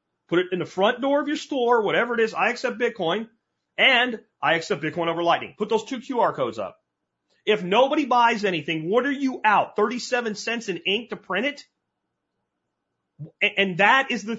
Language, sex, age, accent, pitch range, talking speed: English, male, 30-49, American, 175-250 Hz, 190 wpm